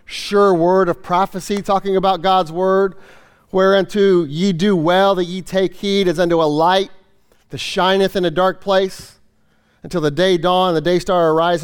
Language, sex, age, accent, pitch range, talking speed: English, male, 40-59, American, 175-225 Hz, 180 wpm